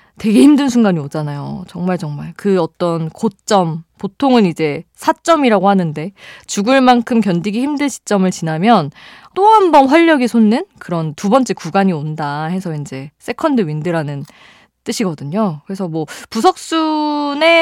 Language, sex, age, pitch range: Korean, female, 20-39, 160-245 Hz